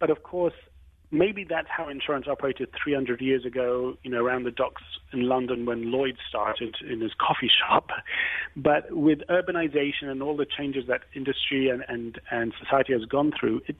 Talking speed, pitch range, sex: 190 wpm, 125-150 Hz, male